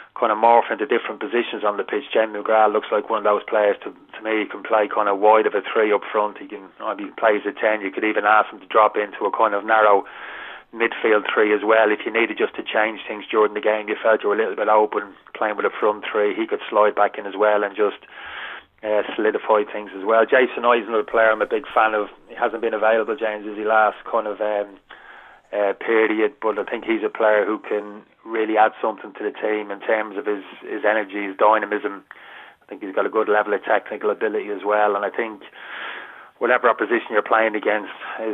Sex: male